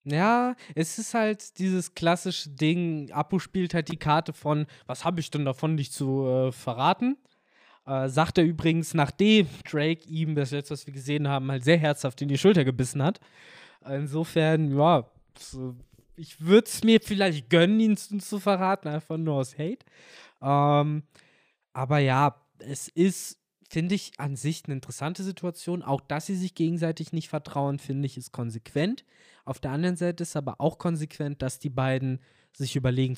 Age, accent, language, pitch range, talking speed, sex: 20-39, German, German, 130-165 Hz, 170 wpm, male